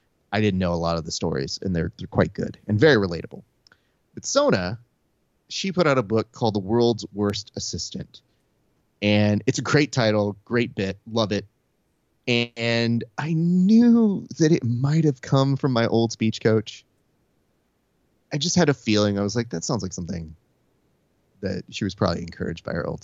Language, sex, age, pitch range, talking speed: English, male, 30-49, 100-145 Hz, 180 wpm